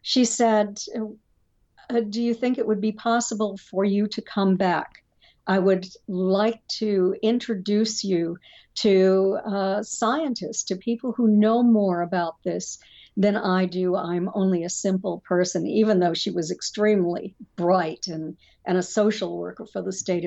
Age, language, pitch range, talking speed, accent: 60-79, English, 190-230 Hz, 155 wpm, American